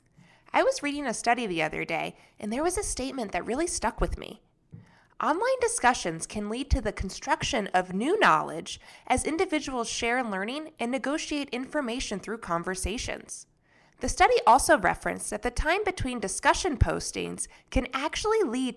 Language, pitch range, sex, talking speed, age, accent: English, 205-310 Hz, female, 160 wpm, 20-39, American